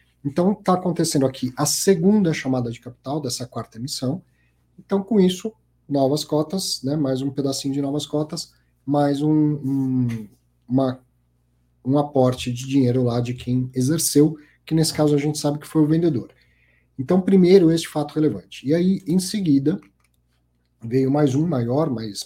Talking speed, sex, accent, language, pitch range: 160 wpm, male, Brazilian, Portuguese, 125-155 Hz